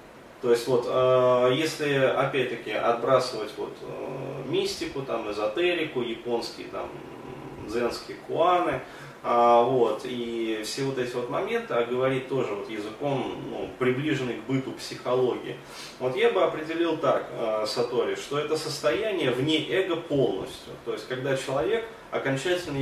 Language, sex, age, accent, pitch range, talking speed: Russian, male, 20-39, native, 125-160 Hz, 125 wpm